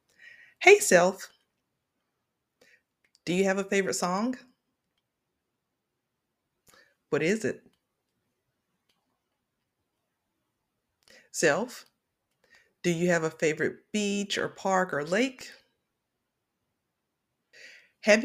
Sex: female